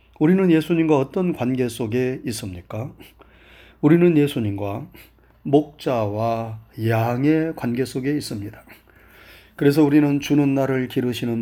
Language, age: Korean, 30-49